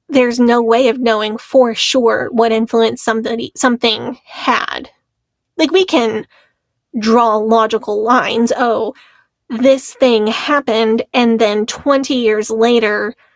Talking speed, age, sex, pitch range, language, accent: 120 wpm, 20-39, female, 225-260 Hz, English, American